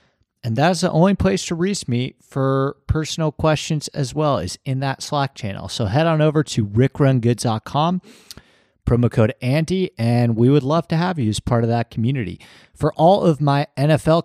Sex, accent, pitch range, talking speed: male, American, 110-140 Hz, 185 wpm